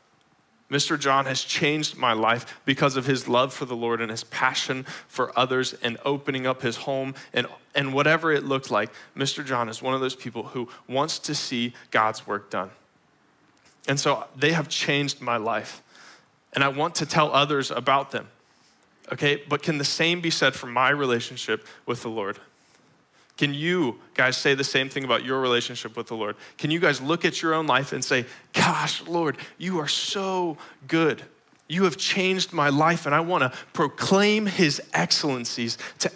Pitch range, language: 135-165 Hz, English